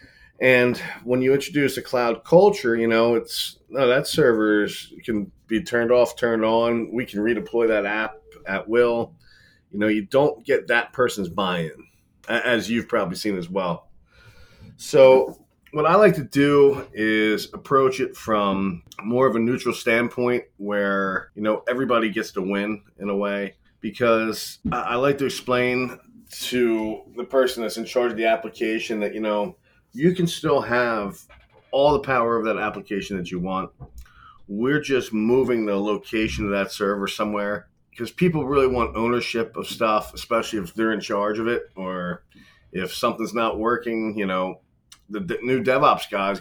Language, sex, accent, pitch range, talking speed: English, male, American, 105-125 Hz, 170 wpm